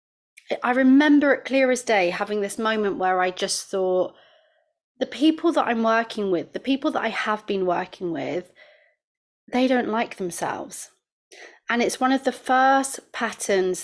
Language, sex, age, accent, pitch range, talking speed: English, female, 30-49, British, 195-265 Hz, 165 wpm